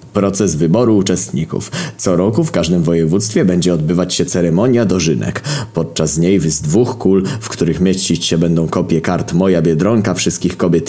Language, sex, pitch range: Polish, male, 80-95 Hz